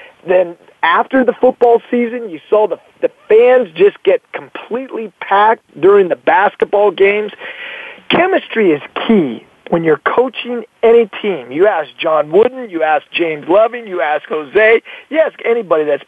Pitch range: 185-265 Hz